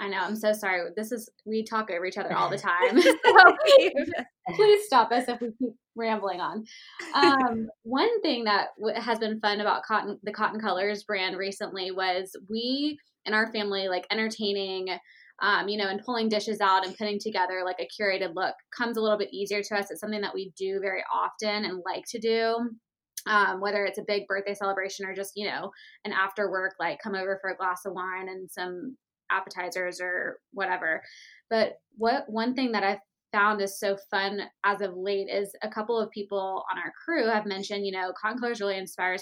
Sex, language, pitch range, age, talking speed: female, English, 195-225 Hz, 20-39, 205 wpm